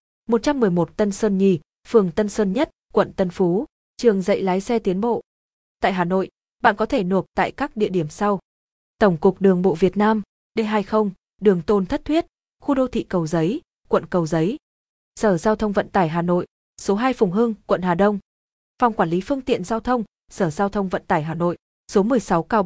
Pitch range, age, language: 185-230 Hz, 20-39, Vietnamese